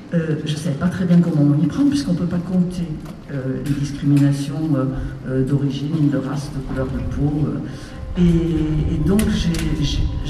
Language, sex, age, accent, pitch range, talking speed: French, female, 60-79, French, 140-175 Hz, 205 wpm